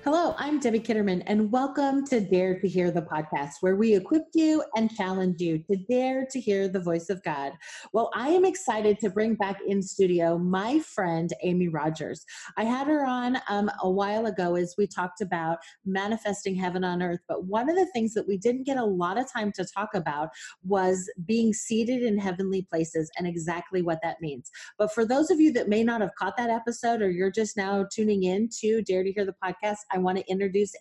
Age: 30-49